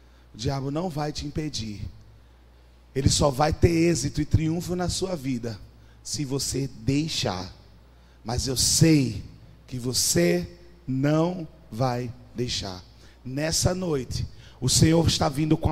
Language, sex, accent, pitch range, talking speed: Portuguese, male, Brazilian, 95-145 Hz, 130 wpm